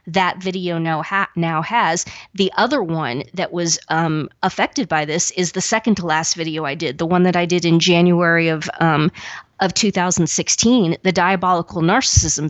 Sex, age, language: female, 30-49, English